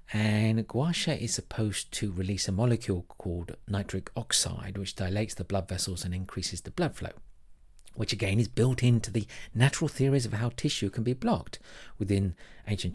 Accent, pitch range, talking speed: British, 95-120 Hz, 170 wpm